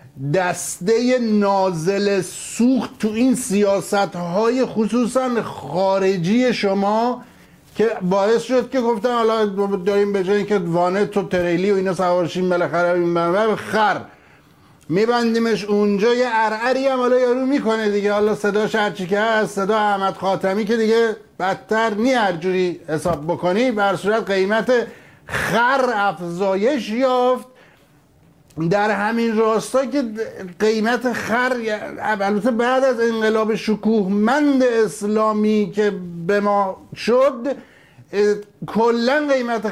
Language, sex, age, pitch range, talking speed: Persian, male, 50-69, 190-235 Hz, 115 wpm